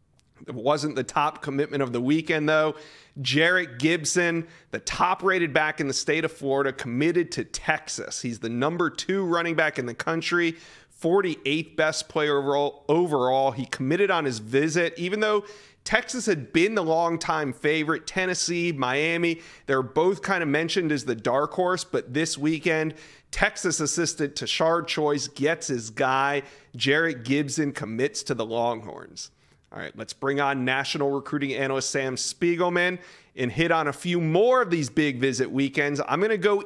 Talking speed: 165 wpm